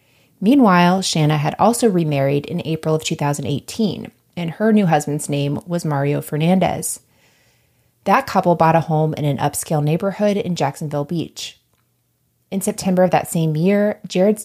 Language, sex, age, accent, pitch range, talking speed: English, female, 20-39, American, 150-190 Hz, 150 wpm